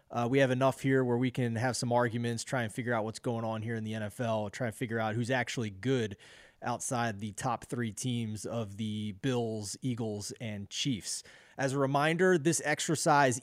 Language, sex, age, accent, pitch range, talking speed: English, male, 30-49, American, 120-155 Hz, 200 wpm